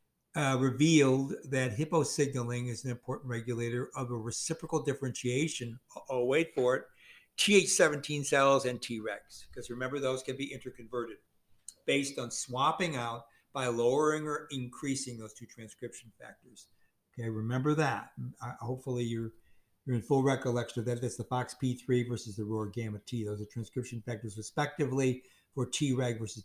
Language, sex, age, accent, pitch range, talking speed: English, male, 60-79, American, 120-145 Hz, 160 wpm